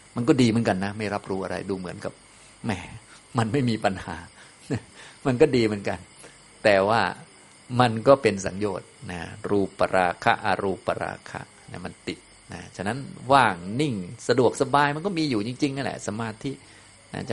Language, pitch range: Thai, 100-130 Hz